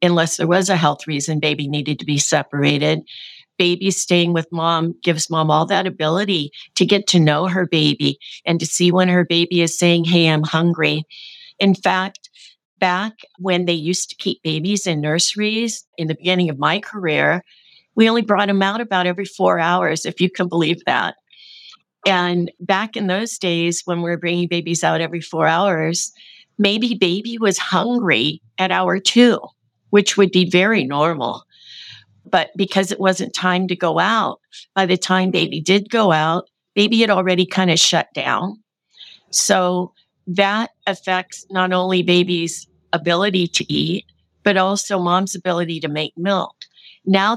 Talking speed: 170 wpm